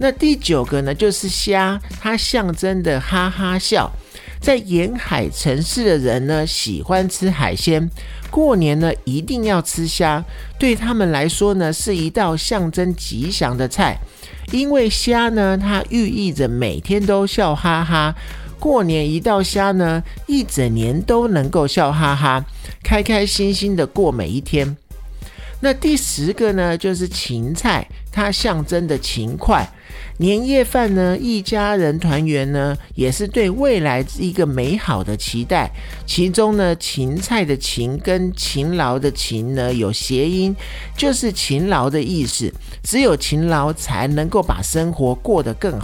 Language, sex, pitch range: Chinese, male, 145-210 Hz